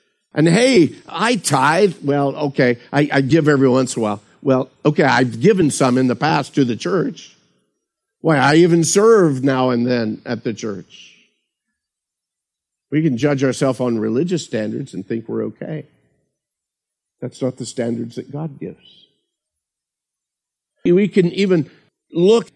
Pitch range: 135-185 Hz